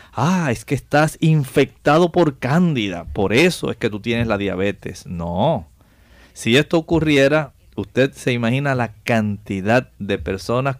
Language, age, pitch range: Spanish, 50-69, 100-140 Hz